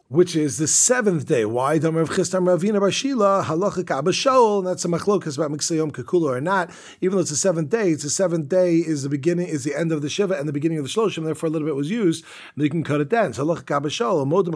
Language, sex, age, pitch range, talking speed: English, male, 30-49, 145-180 Hz, 195 wpm